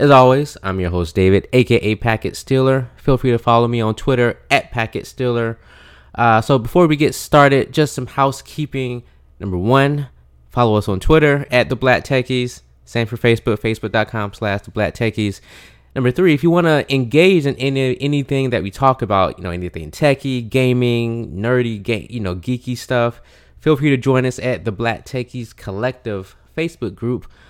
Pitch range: 100-130 Hz